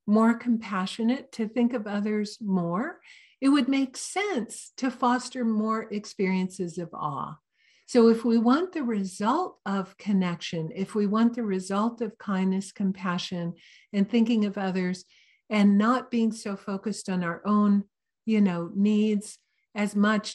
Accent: American